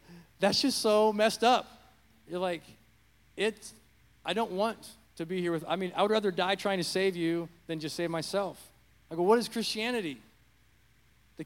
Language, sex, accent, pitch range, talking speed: English, male, American, 135-175 Hz, 185 wpm